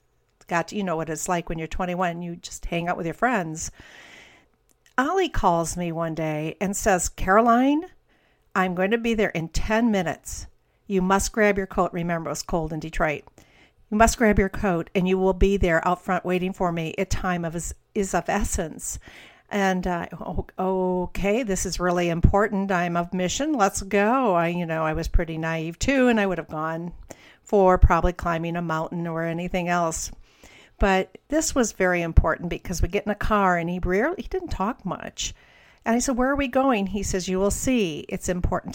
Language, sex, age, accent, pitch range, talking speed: English, female, 50-69, American, 170-205 Hz, 200 wpm